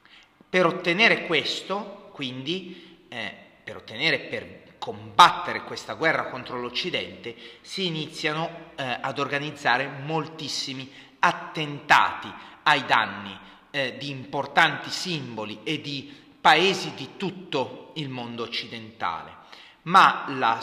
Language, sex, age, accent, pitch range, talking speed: Italian, male, 30-49, native, 125-170 Hz, 105 wpm